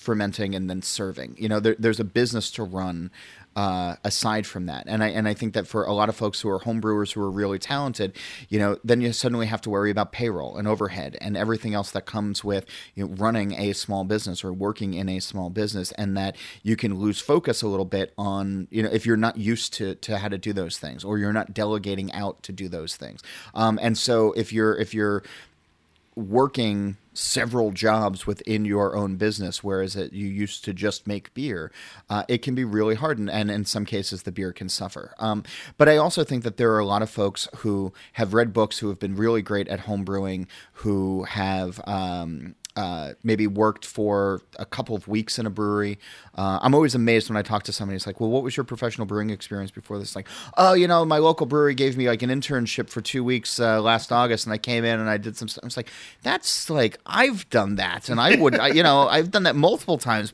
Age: 30-49